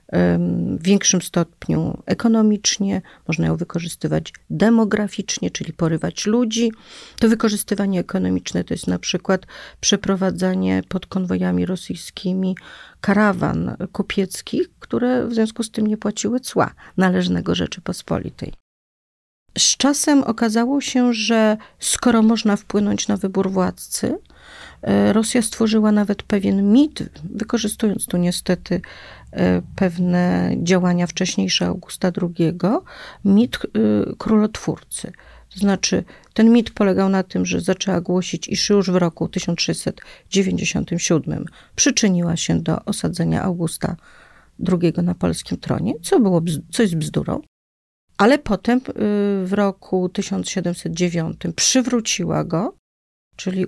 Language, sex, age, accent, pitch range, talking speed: Polish, female, 40-59, native, 170-215 Hz, 110 wpm